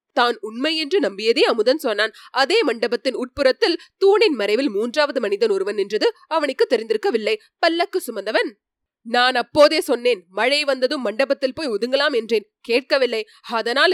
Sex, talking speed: female, 130 wpm